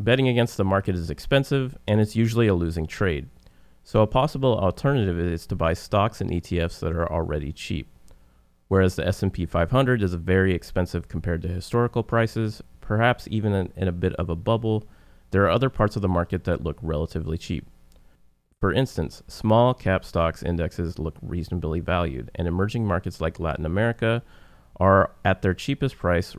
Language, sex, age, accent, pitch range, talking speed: English, male, 30-49, American, 80-105 Hz, 175 wpm